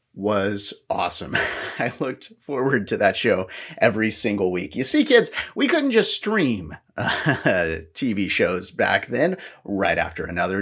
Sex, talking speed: male, 145 wpm